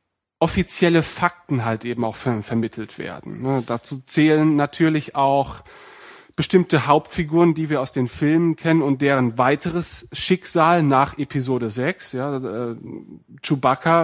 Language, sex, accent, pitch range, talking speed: German, male, German, 125-160 Hz, 120 wpm